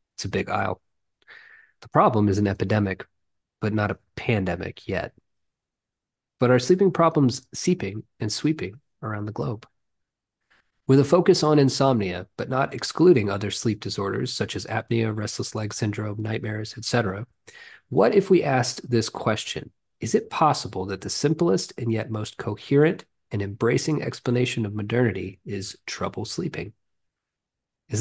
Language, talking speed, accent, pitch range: English, 145 wpm, American, 100-125 Hz